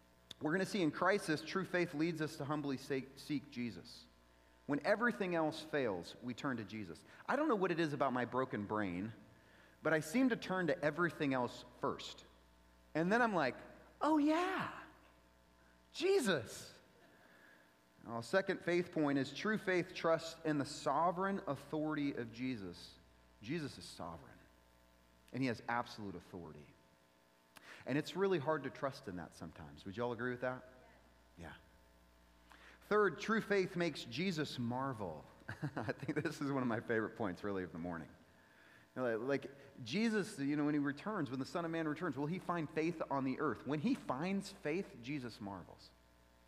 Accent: American